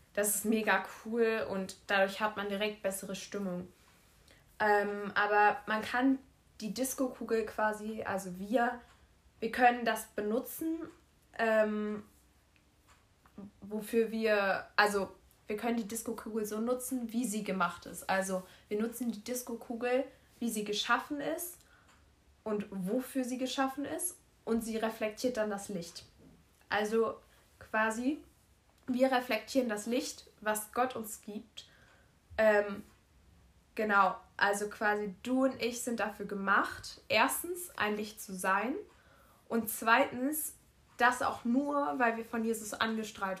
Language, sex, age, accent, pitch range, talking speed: German, female, 20-39, German, 195-240 Hz, 130 wpm